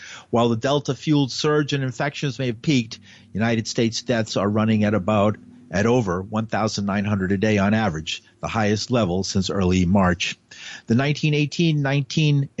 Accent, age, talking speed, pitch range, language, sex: American, 50-69, 145 wpm, 105-135 Hz, English, male